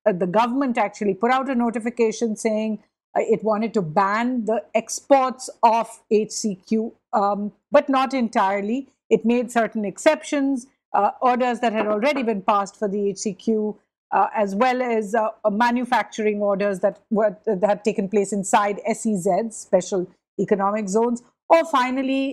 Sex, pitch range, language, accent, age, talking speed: female, 210-255 Hz, English, Indian, 50-69, 150 wpm